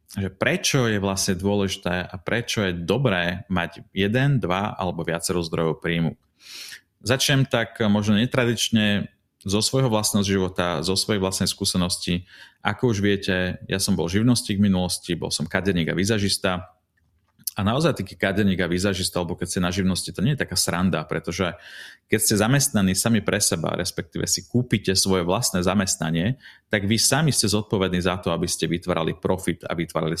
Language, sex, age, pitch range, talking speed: Slovak, male, 30-49, 90-110 Hz, 165 wpm